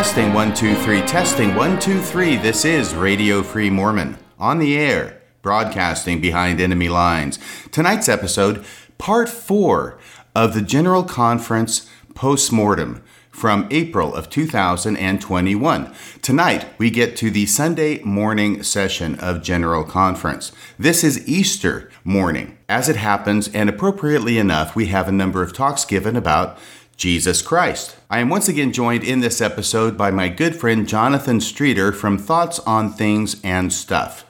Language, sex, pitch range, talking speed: English, male, 95-120 Hz, 145 wpm